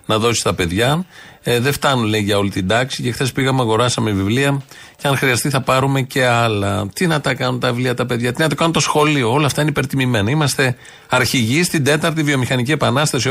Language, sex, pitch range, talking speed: Greek, male, 100-135 Hz, 210 wpm